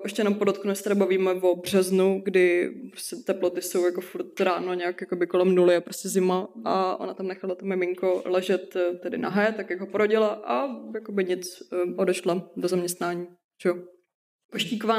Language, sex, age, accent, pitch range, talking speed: Czech, female, 20-39, native, 185-205 Hz, 155 wpm